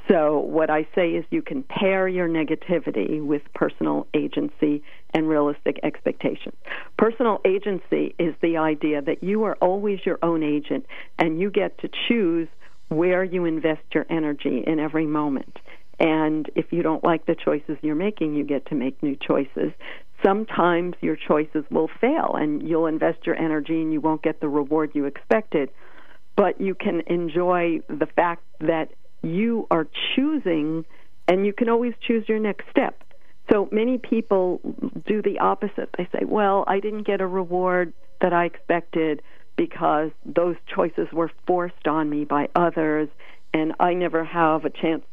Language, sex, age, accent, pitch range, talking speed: English, female, 50-69, American, 155-195 Hz, 165 wpm